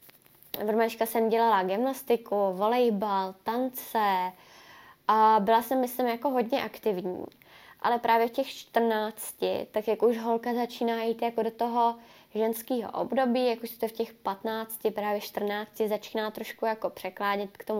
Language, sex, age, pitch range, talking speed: Czech, female, 20-39, 205-235 Hz, 150 wpm